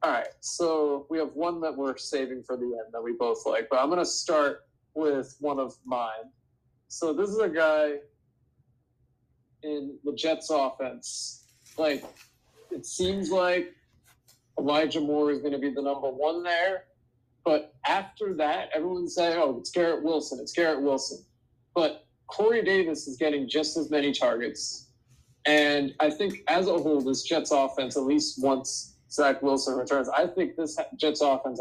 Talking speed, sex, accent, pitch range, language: 170 wpm, male, American, 130-155 Hz, English